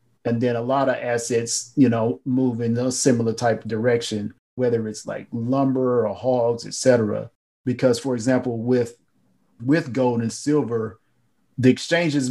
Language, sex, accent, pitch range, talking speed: English, male, American, 110-130 Hz, 160 wpm